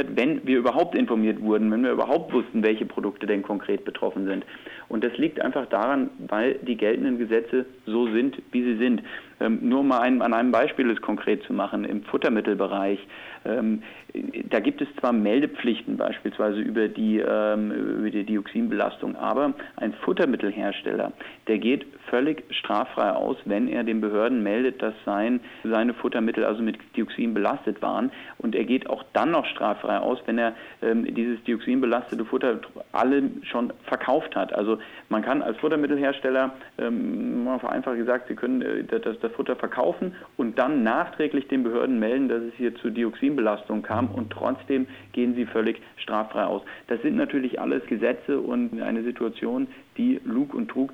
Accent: German